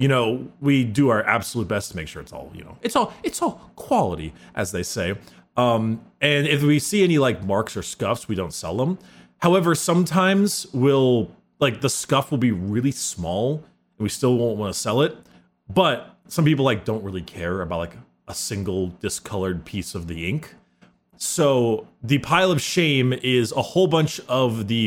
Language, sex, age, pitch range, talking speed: English, male, 30-49, 105-145 Hz, 195 wpm